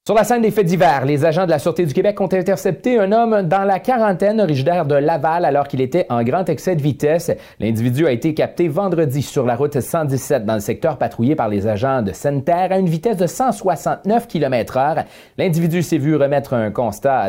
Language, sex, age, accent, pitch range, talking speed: French, male, 30-49, Canadian, 140-195 Hz, 215 wpm